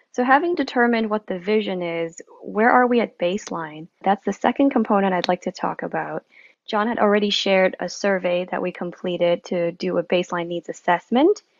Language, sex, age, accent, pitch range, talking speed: English, female, 20-39, American, 175-220 Hz, 185 wpm